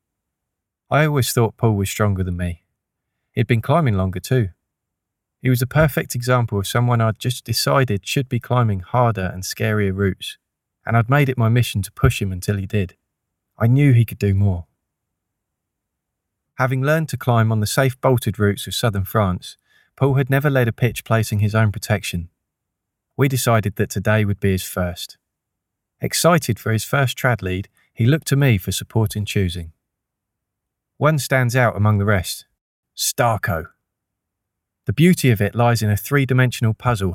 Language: English